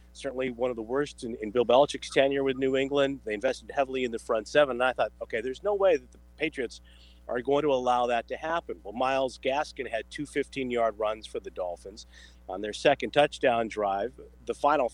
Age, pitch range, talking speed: 40-59, 105-140 Hz, 215 wpm